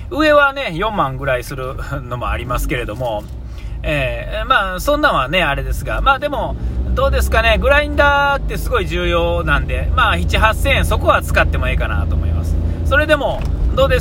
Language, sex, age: Japanese, male, 40-59